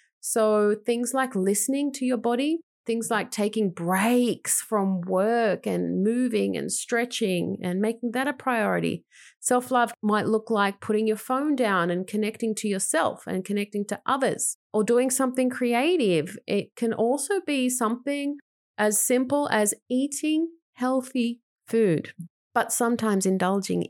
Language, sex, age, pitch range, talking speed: English, female, 30-49, 190-245 Hz, 140 wpm